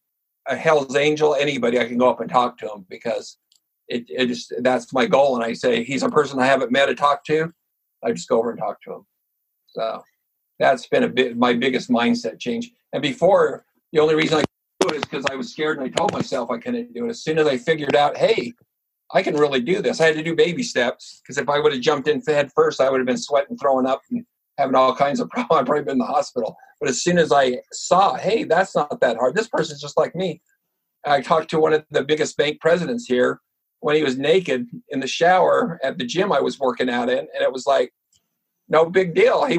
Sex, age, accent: male, 50-69, American